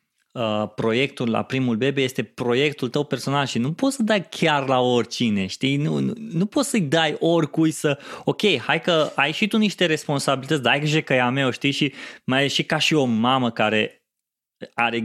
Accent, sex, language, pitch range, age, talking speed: native, male, Romanian, 115-140 Hz, 20-39, 205 wpm